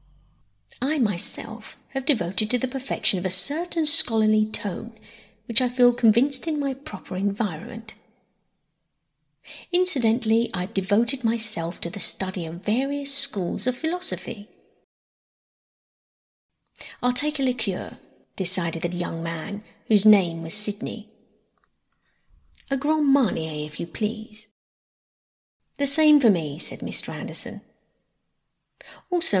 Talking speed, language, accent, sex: 120 wpm, English, British, female